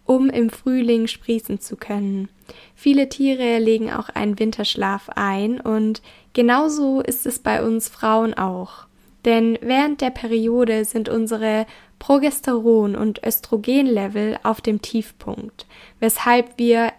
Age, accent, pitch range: 10-29, German, 215-250 Hz